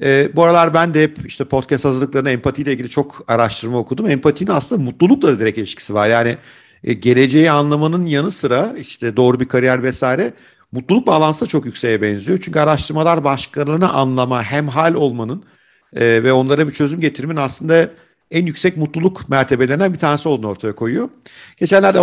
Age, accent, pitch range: 50-69, native, 125-155 Hz